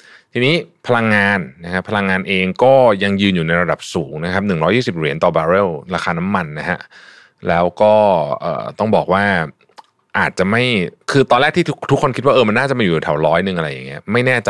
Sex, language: male, Thai